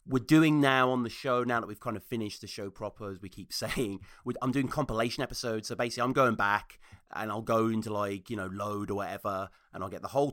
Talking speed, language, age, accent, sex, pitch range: 250 wpm, English, 30-49, British, male, 110-150 Hz